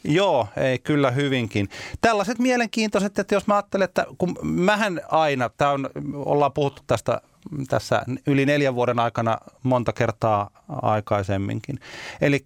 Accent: native